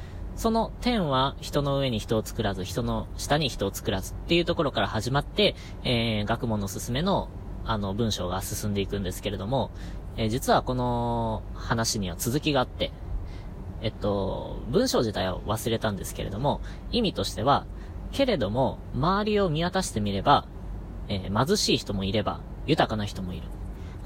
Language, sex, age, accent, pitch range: Japanese, female, 20-39, native, 95-145 Hz